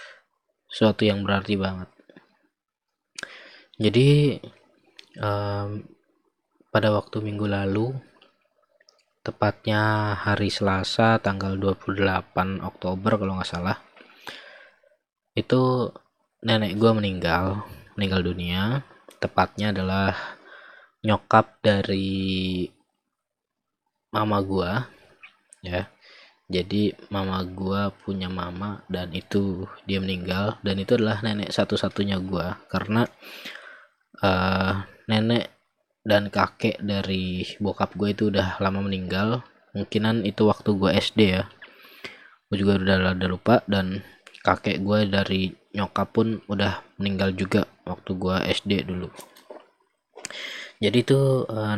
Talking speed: 100 wpm